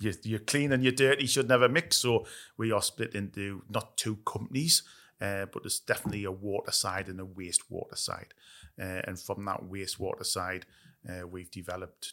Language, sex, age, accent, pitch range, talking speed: English, male, 30-49, British, 90-105 Hz, 180 wpm